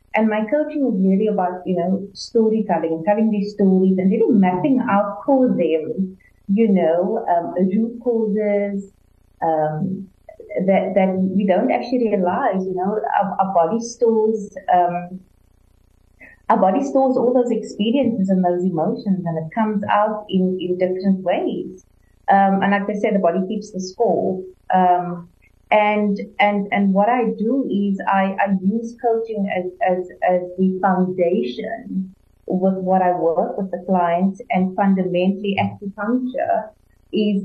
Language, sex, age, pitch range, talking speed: English, female, 30-49, 180-215 Hz, 145 wpm